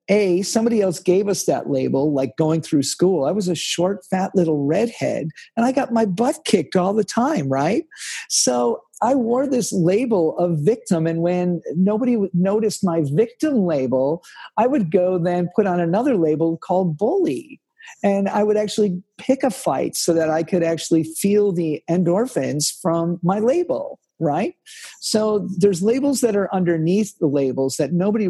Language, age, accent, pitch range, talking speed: English, 50-69, American, 165-220 Hz, 170 wpm